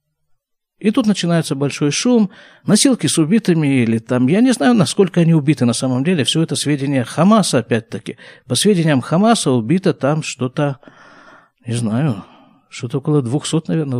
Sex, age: male, 50-69